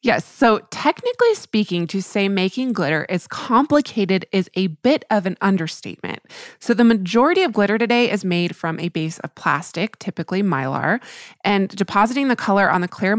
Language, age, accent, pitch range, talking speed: English, 20-39, American, 180-235 Hz, 175 wpm